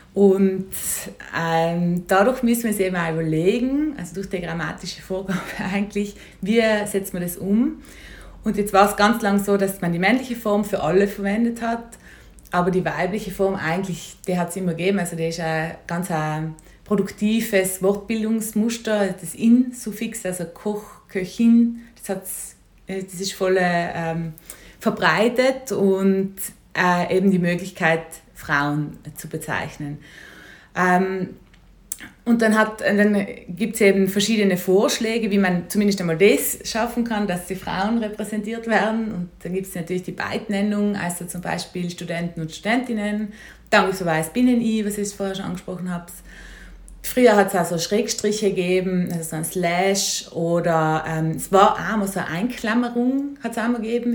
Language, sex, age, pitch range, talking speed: German, female, 20-39, 175-215 Hz, 160 wpm